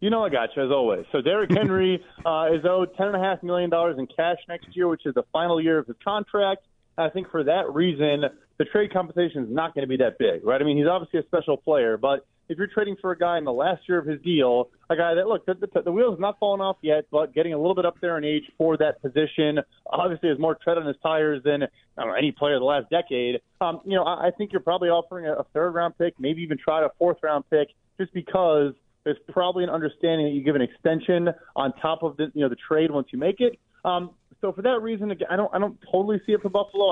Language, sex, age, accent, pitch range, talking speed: English, male, 30-49, American, 150-190 Hz, 270 wpm